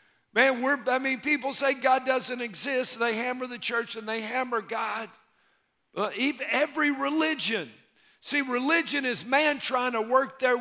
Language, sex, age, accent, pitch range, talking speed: English, male, 50-69, American, 220-275 Hz, 165 wpm